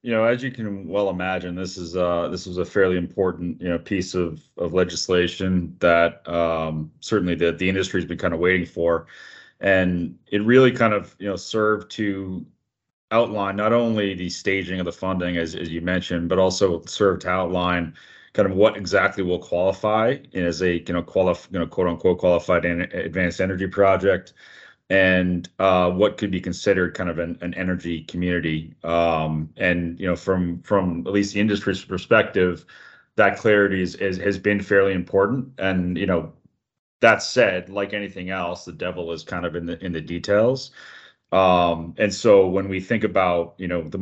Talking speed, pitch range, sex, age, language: 190 wpm, 85-100 Hz, male, 30-49, English